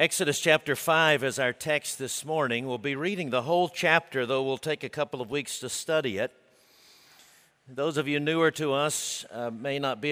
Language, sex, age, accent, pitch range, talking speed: English, male, 50-69, American, 130-160 Hz, 200 wpm